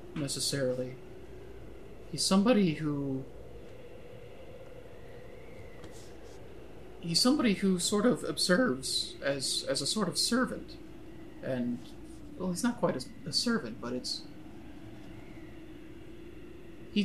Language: English